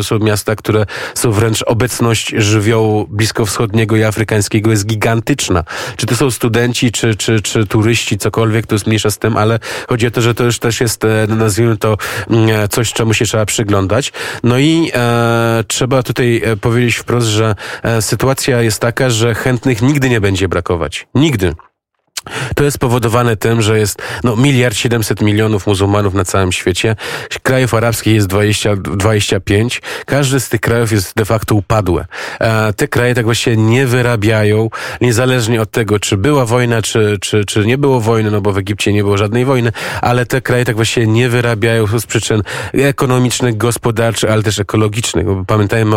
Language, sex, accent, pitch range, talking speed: Polish, male, native, 110-120 Hz, 170 wpm